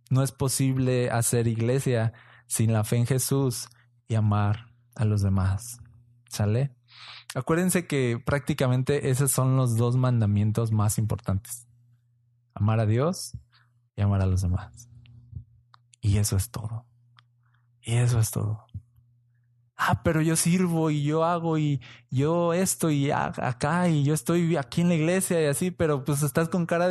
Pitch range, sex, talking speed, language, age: 120-155 Hz, male, 150 wpm, Spanish, 20-39